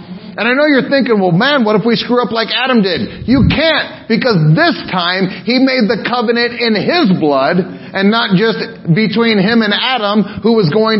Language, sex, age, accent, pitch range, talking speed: English, male, 40-59, American, 185-240 Hz, 200 wpm